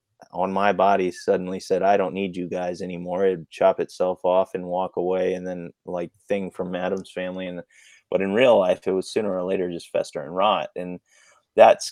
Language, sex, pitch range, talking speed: English, male, 90-105 Hz, 205 wpm